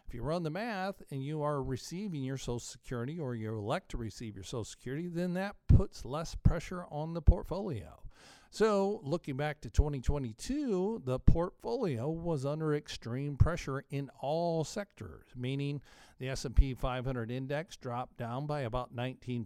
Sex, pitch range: male, 125-160 Hz